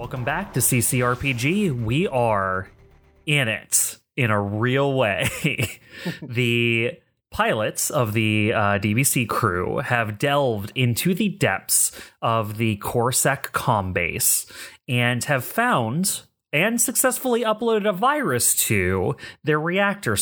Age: 30-49